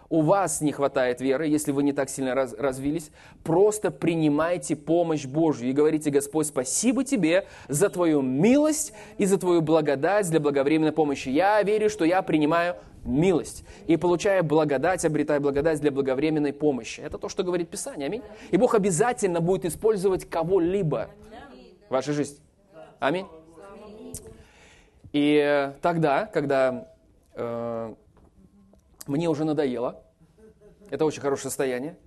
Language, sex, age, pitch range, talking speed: Russian, male, 20-39, 140-200 Hz, 135 wpm